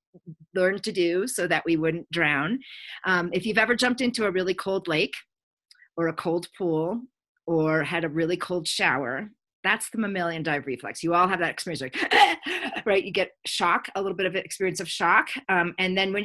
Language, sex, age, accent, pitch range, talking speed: English, female, 40-59, American, 155-190 Hz, 195 wpm